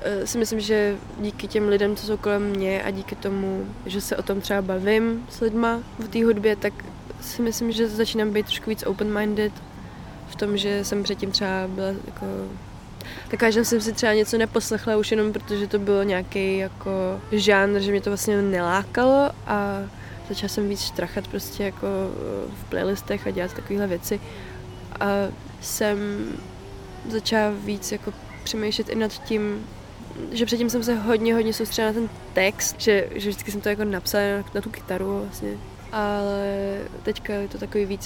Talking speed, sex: 170 wpm, female